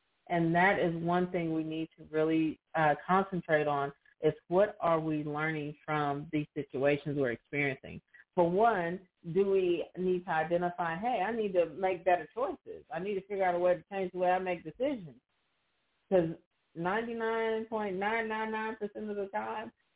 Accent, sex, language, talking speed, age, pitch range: American, female, English, 165 wpm, 40-59, 155-190 Hz